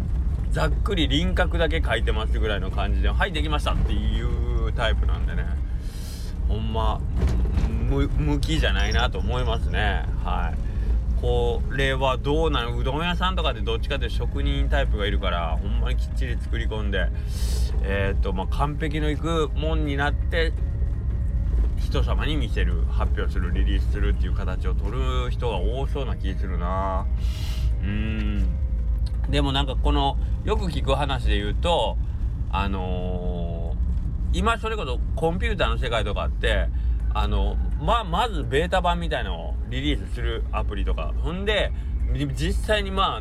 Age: 20-39